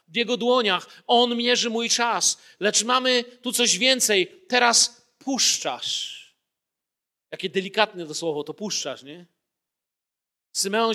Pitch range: 180-230 Hz